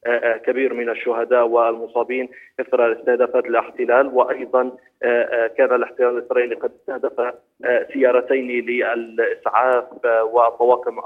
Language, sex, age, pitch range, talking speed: Arabic, male, 30-49, 115-135 Hz, 85 wpm